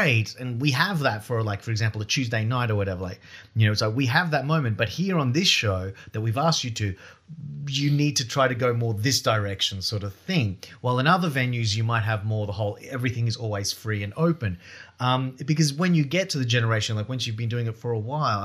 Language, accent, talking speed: English, Australian, 245 wpm